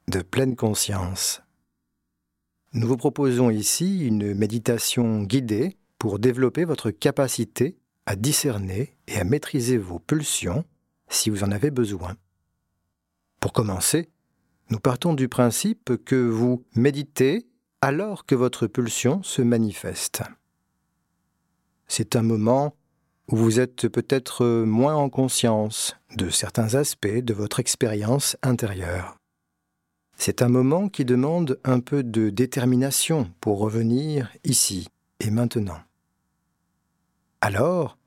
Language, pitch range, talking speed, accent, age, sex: French, 110-140 Hz, 115 wpm, French, 40-59, male